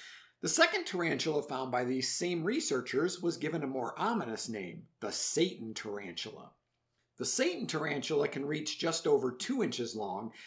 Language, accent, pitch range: English, American, 135-195 Hz